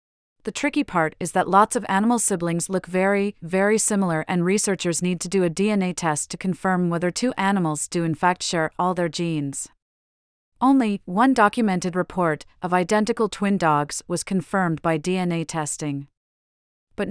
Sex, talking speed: female, 165 wpm